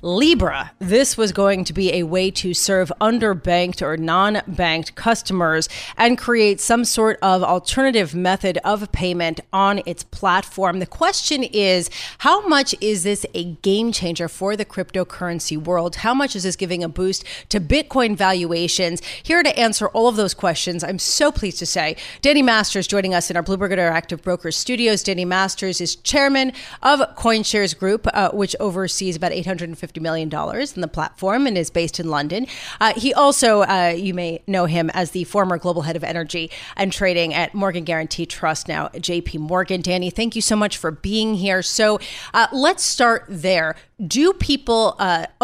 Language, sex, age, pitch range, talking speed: English, female, 30-49, 175-220 Hz, 175 wpm